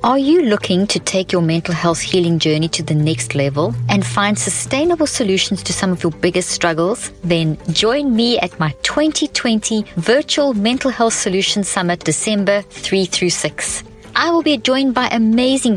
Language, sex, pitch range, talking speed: English, female, 170-240 Hz, 170 wpm